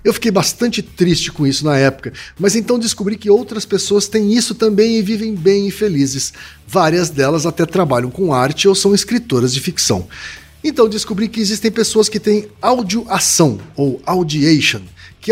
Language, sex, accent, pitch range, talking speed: Portuguese, male, Brazilian, 145-215 Hz, 170 wpm